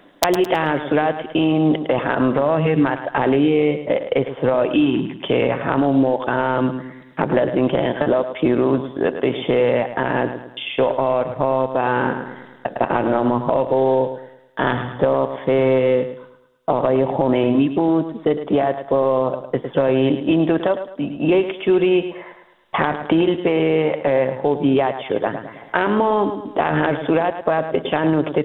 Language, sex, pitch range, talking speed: Persian, female, 135-170 Hz, 95 wpm